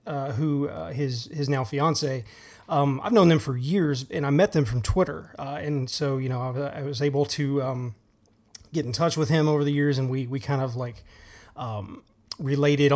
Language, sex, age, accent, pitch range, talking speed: English, male, 30-49, American, 125-150 Hz, 215 wpm